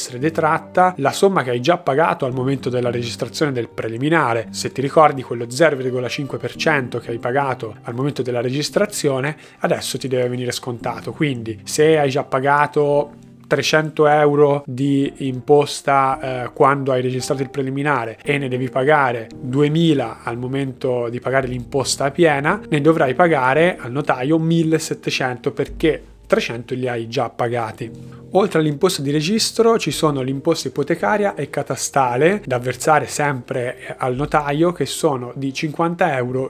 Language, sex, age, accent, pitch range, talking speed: Italian, male, 30-49, native, 125-160 Hz, 145 wpm